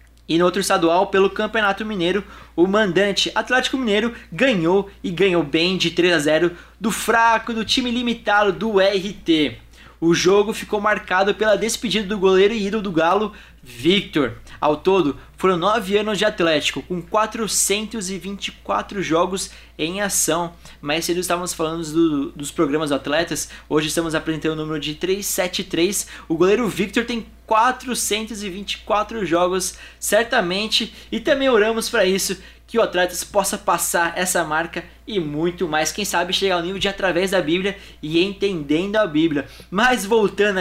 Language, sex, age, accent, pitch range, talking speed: Portuguese, male, 20-39, Brazilian, 170-215 Hz, 155 wpm